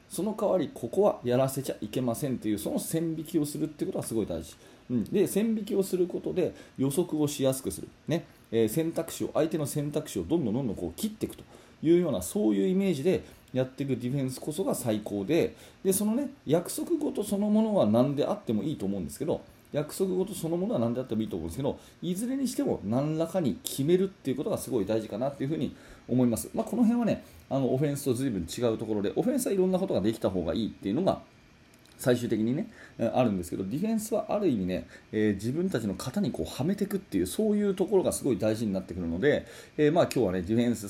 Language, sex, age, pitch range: Japanese, male, 30-49, 115-185 Hz